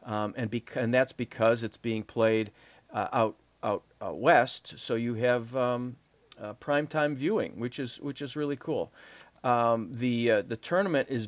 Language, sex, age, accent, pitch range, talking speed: English, male, 40-59, American, 110-135 Hz, 175 wpm